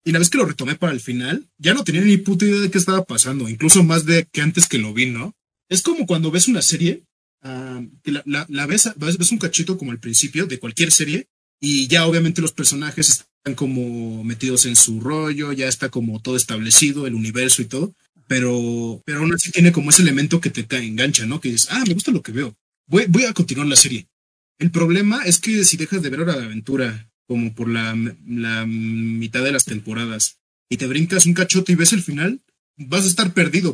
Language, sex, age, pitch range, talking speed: Spanish, male, 30-49, 125-170 Hz, 225 wpm